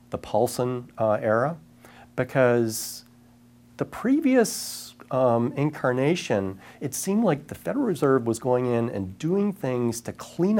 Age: 40-59